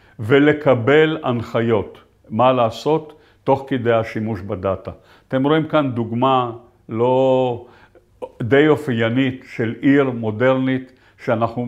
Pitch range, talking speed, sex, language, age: 110-130 Hz, 100 wpm, male, Hebrew, 50-69